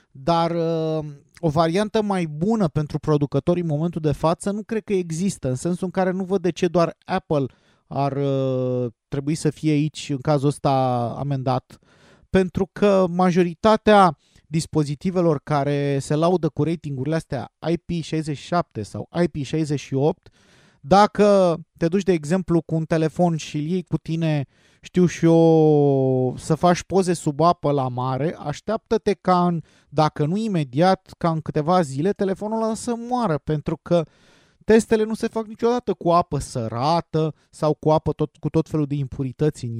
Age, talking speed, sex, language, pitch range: 30-49, 155 wpm, male, Romanian, 145-180 Hz